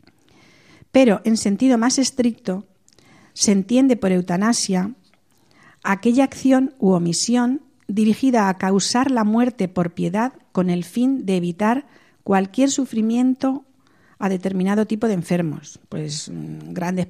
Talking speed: 120 wpm